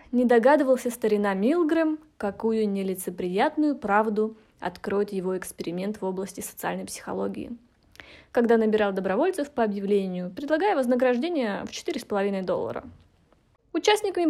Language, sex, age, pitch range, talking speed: Russian, female, 20-39, 210-295 Hz, 105 wpm